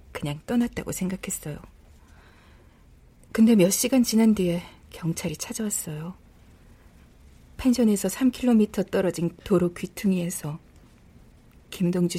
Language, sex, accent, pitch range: Korean, female, native, 150-230 Hz